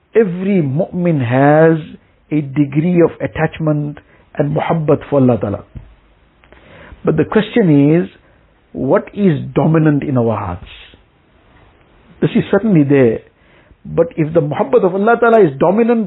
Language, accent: English, Indian